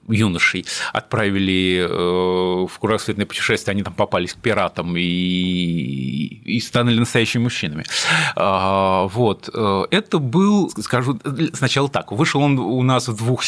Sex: male